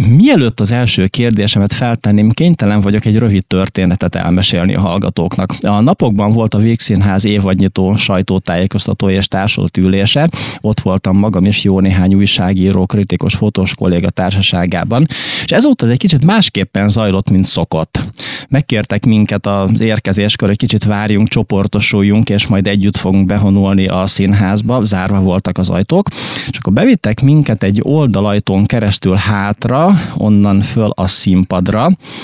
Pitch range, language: 95-115 Hz, Hungarian